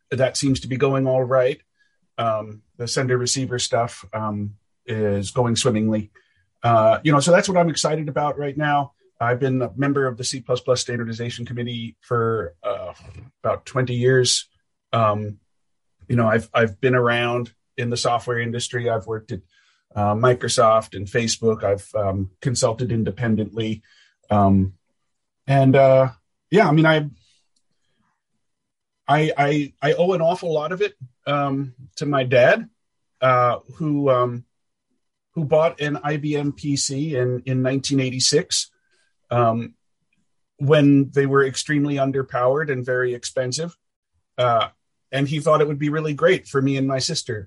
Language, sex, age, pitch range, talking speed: English, male, 40-59, 115-145 Hz, 150 wpm